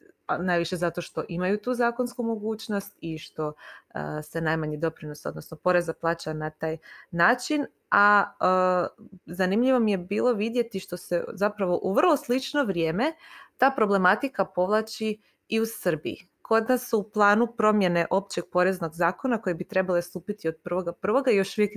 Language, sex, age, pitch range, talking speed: Croatian, female, 20-39, 165-215 Hz, 155 wpm